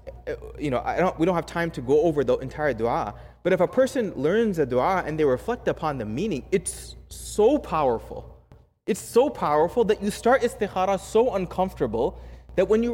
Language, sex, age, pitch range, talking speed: English, male, 20-39, 140-225 Hz, 195 wpm